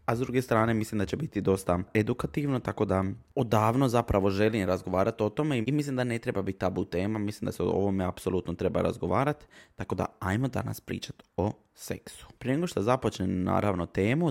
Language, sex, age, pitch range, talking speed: Croatian, male, 20-39, 95-115 Hz, 195 wpm